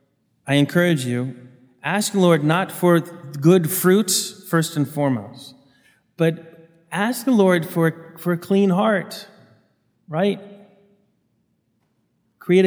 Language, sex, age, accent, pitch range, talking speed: English, male, 30-49, American, 140-180 Hz, 115 wpm